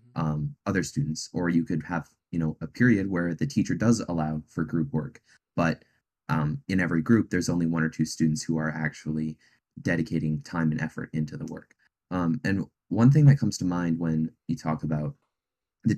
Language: English